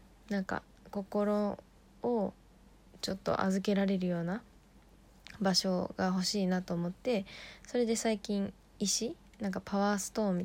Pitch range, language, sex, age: 180-200 Hz, Japanese, female, 20-39